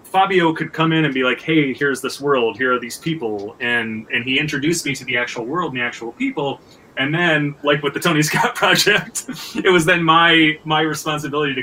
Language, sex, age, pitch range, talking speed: English, male, 30-49, 120-155 Hz, 220 wpm